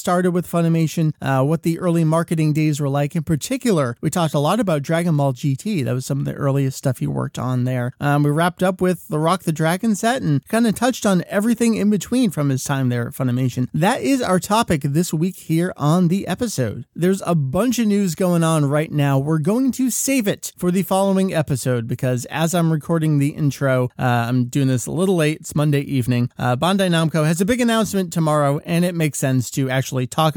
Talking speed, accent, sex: 225 wpm, American, male